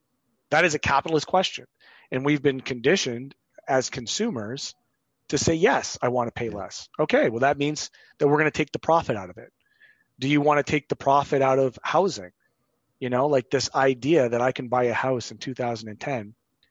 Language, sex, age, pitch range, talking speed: English, male, 30-49, 120-150 Hz, 200 wpm